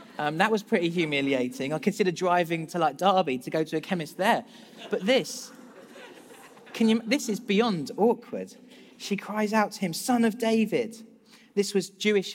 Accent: British